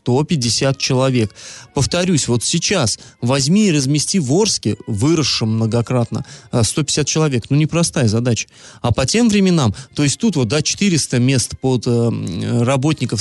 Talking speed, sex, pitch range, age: 135 wpm, male, 120-150 Hz, 20-39